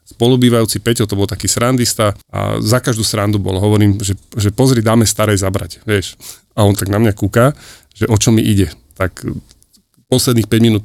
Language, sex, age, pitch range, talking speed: Slovak, male, 30-49, 105-125 Hz, 190 wpm